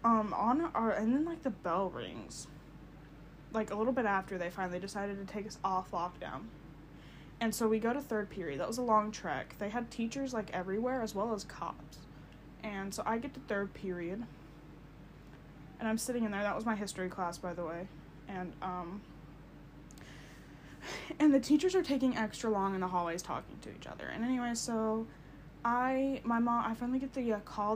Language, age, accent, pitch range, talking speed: English, 10-29, American, 180-235 Hz, 195 wpm